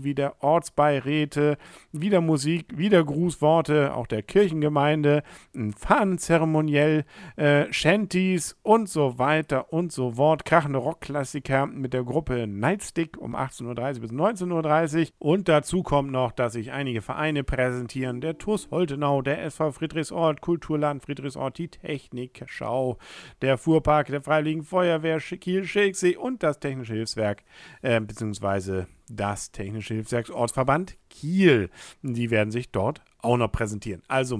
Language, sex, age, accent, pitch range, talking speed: German, male, 50-69, German, 120-160 Hz, 135 wpm